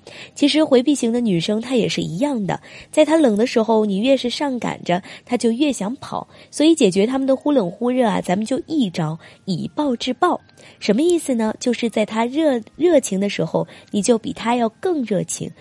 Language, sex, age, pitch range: Chinese, female, 20-39, 205-285 Hz